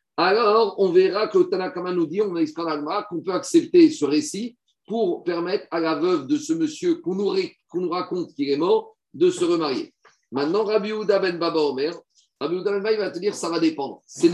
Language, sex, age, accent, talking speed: French, male, 50-69, French, 210 wpm